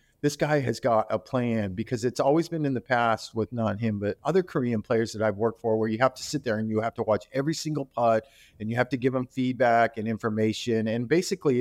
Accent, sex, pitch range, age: American, male, 110-140 Hz, 40-59